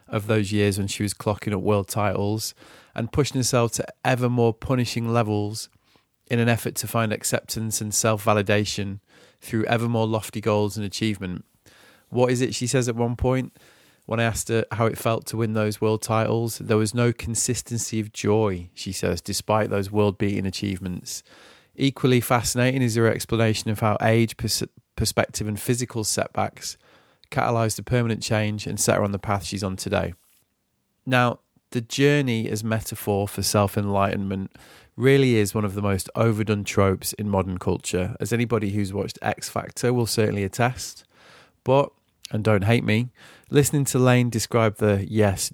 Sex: male